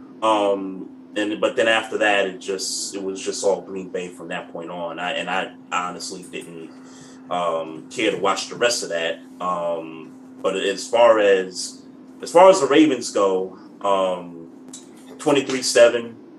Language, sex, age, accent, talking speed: English, male, 30-49, American, 165 wpm